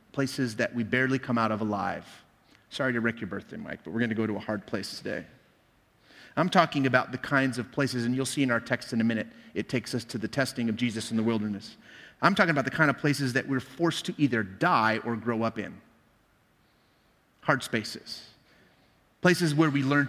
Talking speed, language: 220 wpm, English